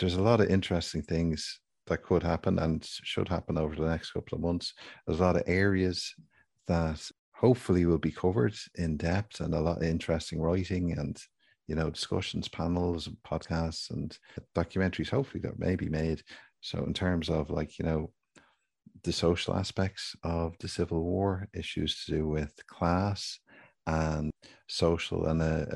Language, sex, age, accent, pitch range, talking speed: English, male, 50-69, Irish, 80-90 Hz, 170 wpm